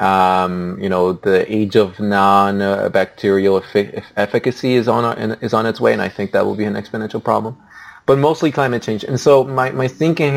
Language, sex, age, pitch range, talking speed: English, male, 20-39, 110-150 Hz, 210 wpm